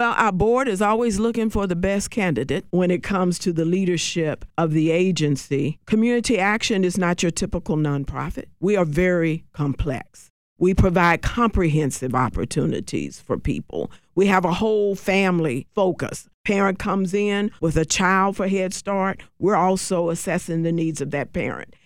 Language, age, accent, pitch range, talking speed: English, 50-69, American, 165-200 Hz, 160 wpm